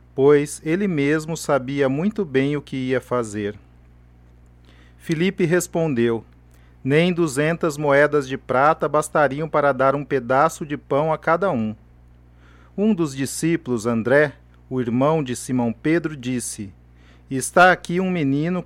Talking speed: 130 wpm